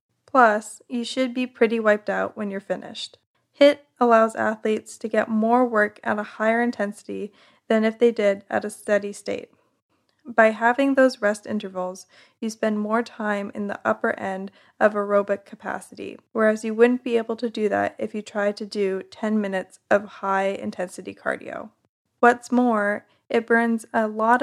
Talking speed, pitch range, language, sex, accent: 170 wpm, 205-235 Hz, English, female, American